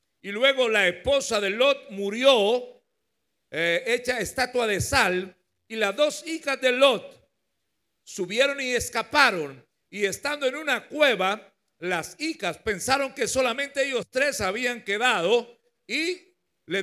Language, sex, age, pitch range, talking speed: Spanish, male, 60-79, 190-275 Hz, 130 wpm